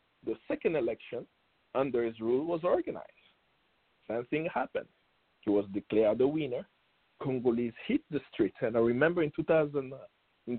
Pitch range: 125-195 Hz